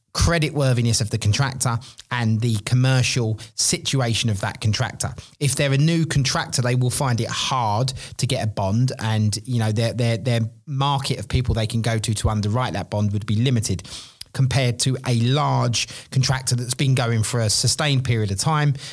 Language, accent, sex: English, British, male